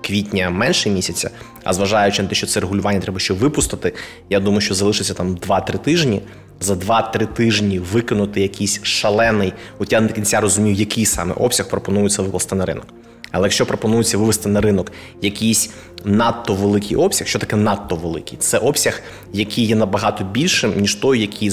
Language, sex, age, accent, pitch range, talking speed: Ukrainian, male, 20-39, native, 100-115 Hz, 170 wpm